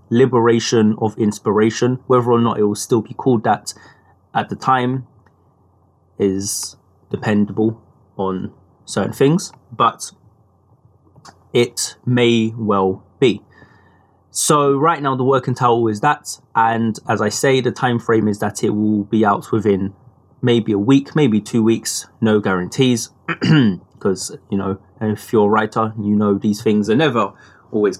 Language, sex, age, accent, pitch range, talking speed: English, male, 20-39, British, 105-125 Hz, 150 wpm